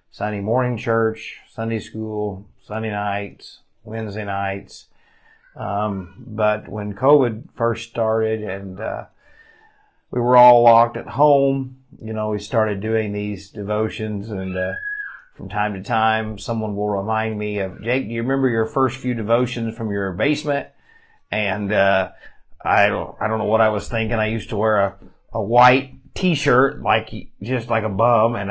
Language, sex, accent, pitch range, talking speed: English, male, American, 100-120 Hz, 160 wpm